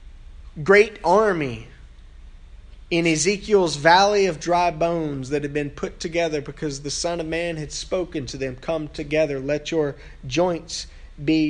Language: English